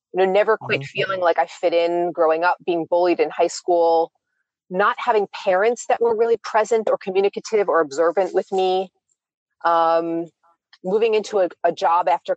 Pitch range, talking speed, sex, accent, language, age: 170-240 Hz, 165 wpm, female, American, English, 30-49